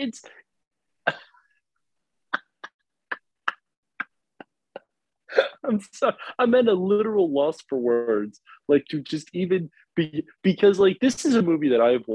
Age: 30-49